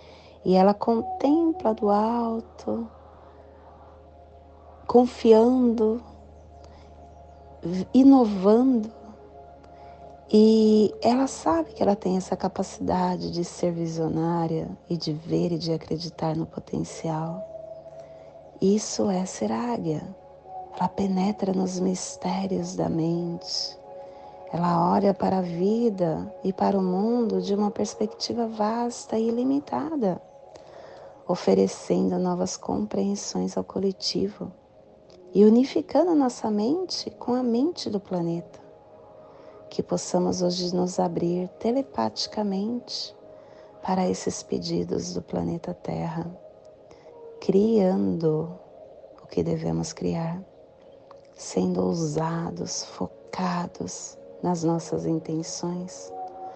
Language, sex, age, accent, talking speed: Portuguese, female, 30-49, Brazilian, 95 wpm